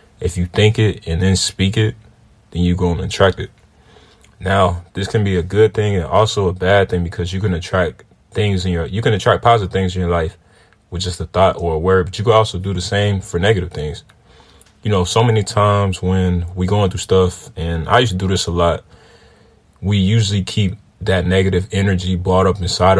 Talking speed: 225 wpm